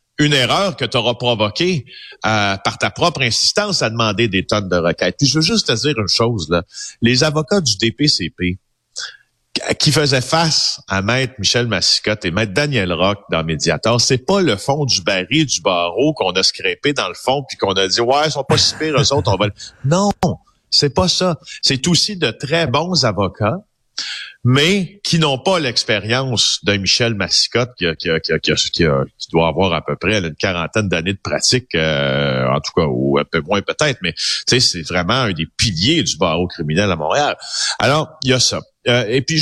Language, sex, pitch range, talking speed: French, male, 100-145 Hz, 195 wpm